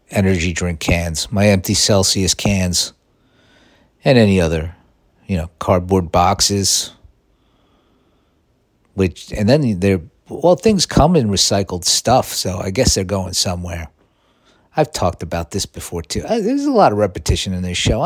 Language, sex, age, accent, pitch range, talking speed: English, male, 50-69, American, 90-115 Hz, 145 wpm